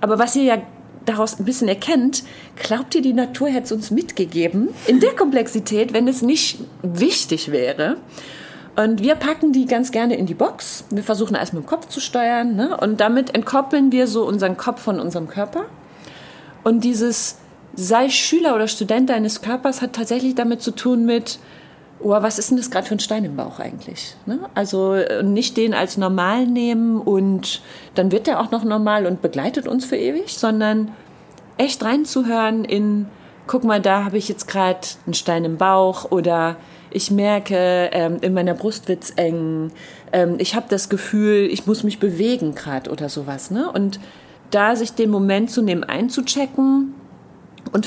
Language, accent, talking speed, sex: German, German, 165 wpm, female